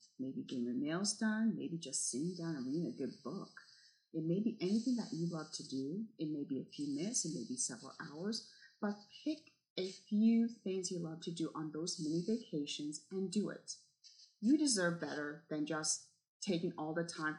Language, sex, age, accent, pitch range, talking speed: English, female, 30-49, American, 155-205 Hz, 205 wpm